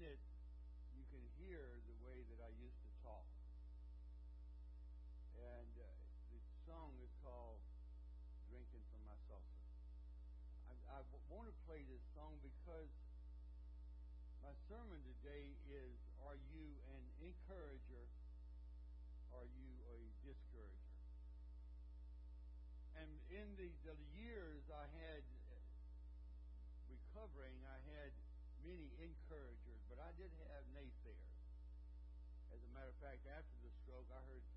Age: 60-79